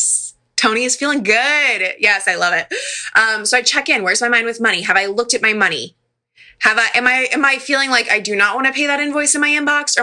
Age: 20-39